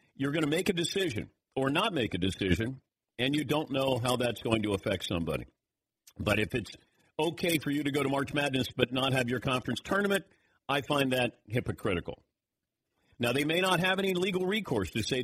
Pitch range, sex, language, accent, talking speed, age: 110-150 Hz, male, English, American, 205 wpm, 50-69